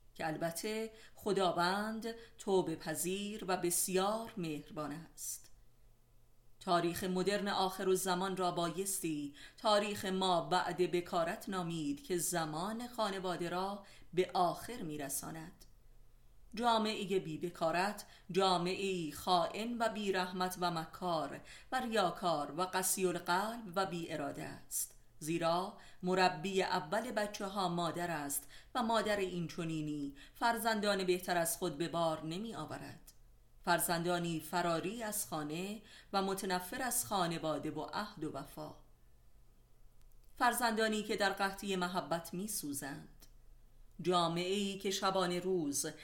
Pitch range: 160-195 Hz